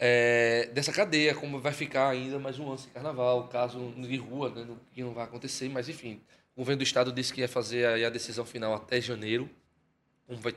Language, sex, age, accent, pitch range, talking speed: Portuguese, male, 20-39, Brazilian, 125-165 Hz, 215 wpm